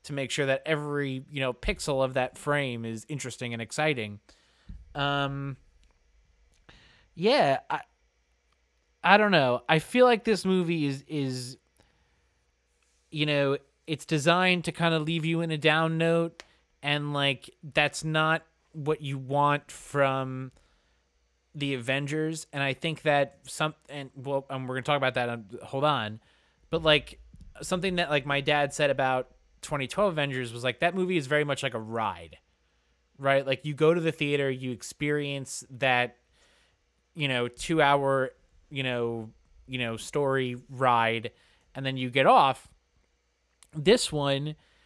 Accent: American